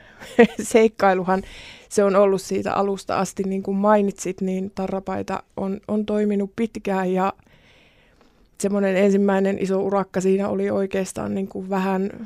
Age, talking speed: 20-39, 125 wpm